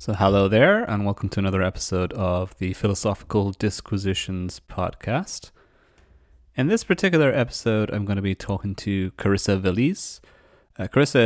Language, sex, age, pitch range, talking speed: English, male, 30-49, 95-110 Hz, 140 wpm